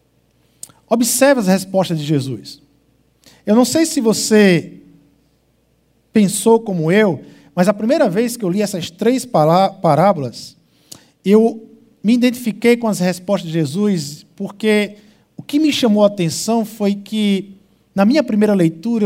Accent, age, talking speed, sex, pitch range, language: Brazilian, 50-69, 140 wpm, male, 200-300 Hz, Portuguese